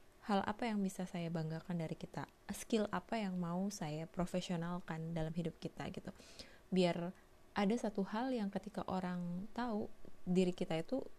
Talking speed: 155 wpm